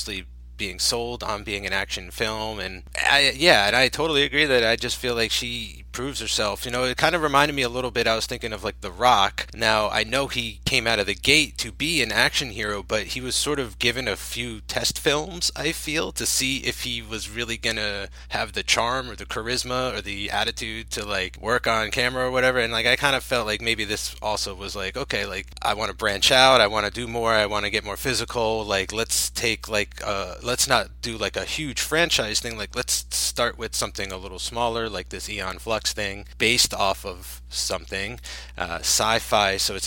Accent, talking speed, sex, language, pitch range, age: American, 230 wpm, male, English, 100-125 Hz, 30-49